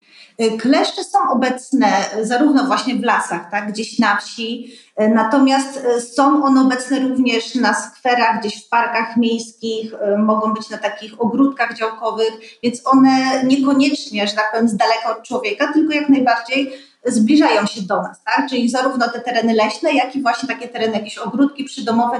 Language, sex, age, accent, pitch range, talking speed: Polish, female, 30-49, native, 225-275 Hz, 160 wpm